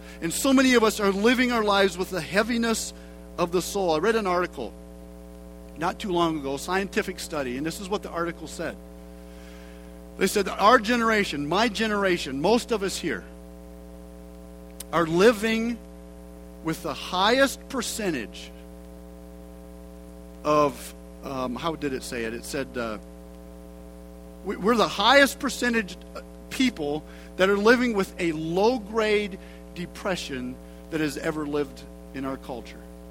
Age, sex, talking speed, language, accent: 50-69, male, 145 wpm, English, American